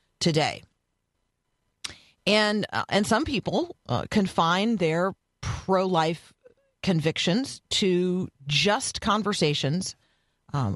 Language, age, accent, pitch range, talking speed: English, 40-59, American, 145-185 Hz, 90 wpm